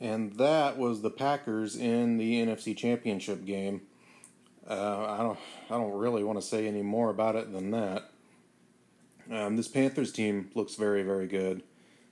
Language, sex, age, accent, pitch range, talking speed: English, male, 30-49, American, 95-110 Hz, 165 wpm